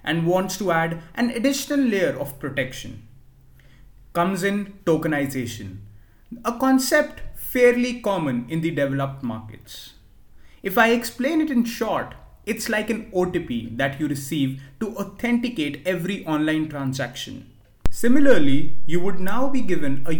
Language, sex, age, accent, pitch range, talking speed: English, male, 30-49, Indian, 130-220 Hz, 135 wpm